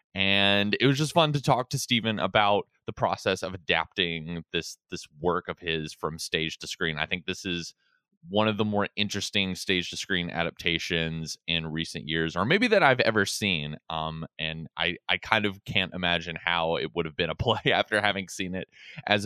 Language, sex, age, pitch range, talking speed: English, male, 20-39, 80-100 Hz, 205 wpm